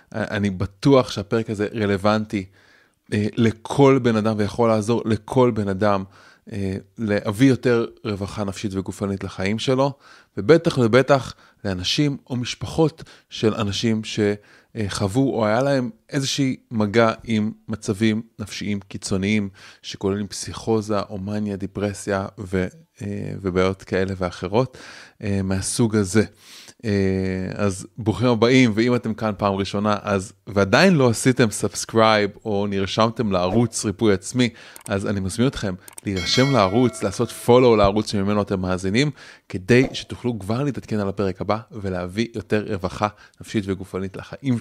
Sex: male